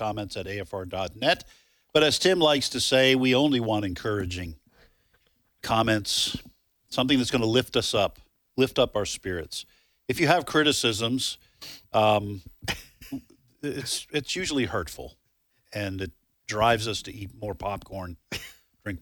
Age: 50-69